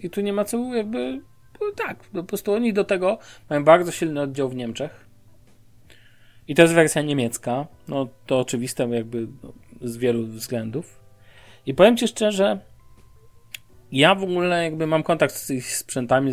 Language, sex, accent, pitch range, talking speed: Polish, male, native, 125-160 Hz, 160 wpm